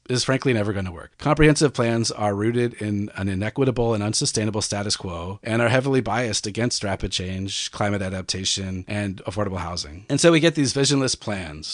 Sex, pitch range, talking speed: male, 95-120 Hz, 185 wpm